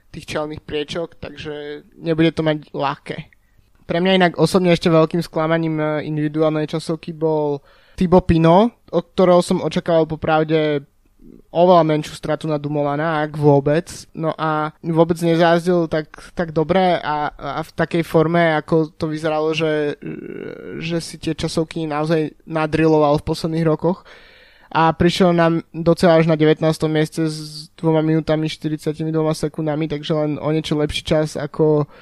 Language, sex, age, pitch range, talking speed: Slovak, male, 20-39, 155-170 Hz, 140 wpm